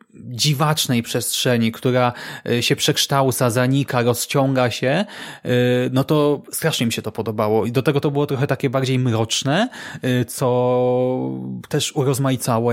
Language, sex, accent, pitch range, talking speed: Polish, male, native, 125-155 Hz, 125 wpm